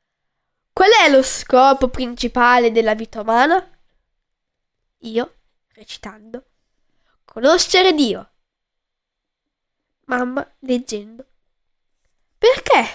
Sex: female